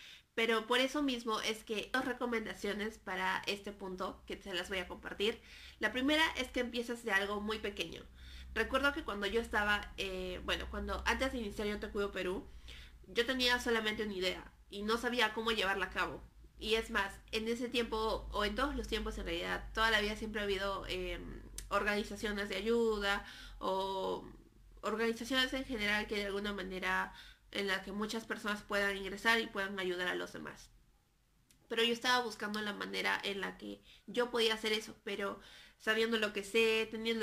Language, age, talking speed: Spanish, 20-39, 185 wpm